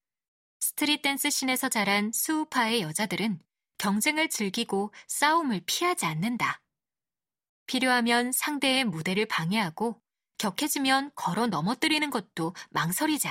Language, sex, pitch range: Korean, female, 195-265 Hz